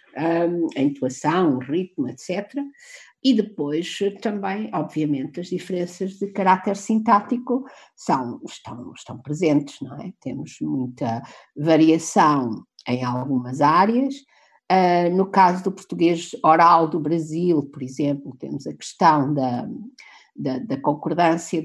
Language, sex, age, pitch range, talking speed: Portuguese, female, 50-69, 145-190 Hz, 115 wpm